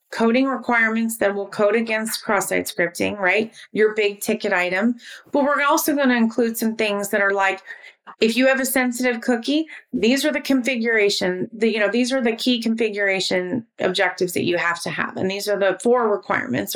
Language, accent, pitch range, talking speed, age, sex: English, American, 200-250 Hz, 190 wpm, 30-49, female